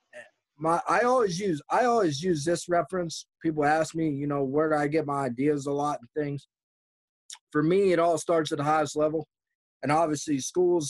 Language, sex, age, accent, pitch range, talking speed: English, male, 30-49, American, 130-155 Hz, 200 wpm